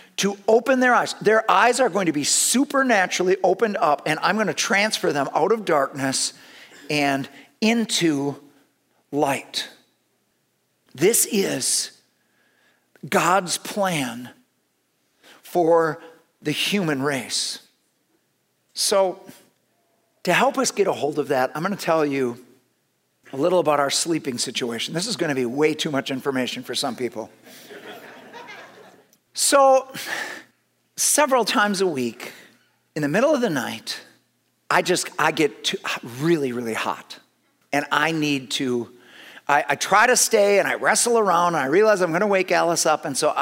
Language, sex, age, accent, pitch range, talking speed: English, male, 50-69, American, 135-190 Hz, 150 wpm